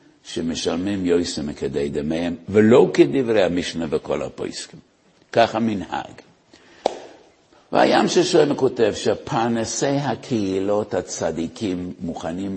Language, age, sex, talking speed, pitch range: Hebrew, 60-79, male, 90 wpm, 85-115 Hz